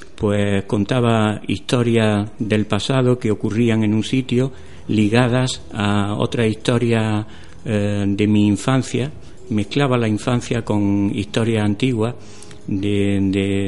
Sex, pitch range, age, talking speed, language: male, 105-120 Hz, 60-79, 115 wpm, Spanish